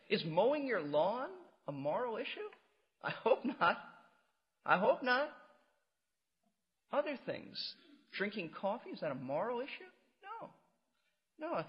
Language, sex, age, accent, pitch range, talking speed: English, male, 40-59, American, 175-265 Hz, 125 wpm